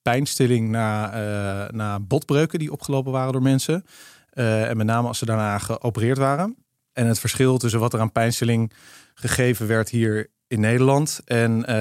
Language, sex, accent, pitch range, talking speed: Dutch, male, Dutch, 100-120 Hz, 170 wpm